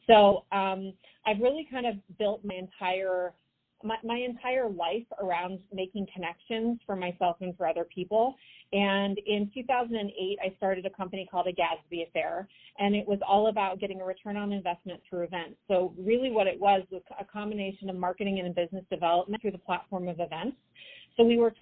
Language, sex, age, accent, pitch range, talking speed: English, female, 30-49, American, 180-210 Hz, 185 wpm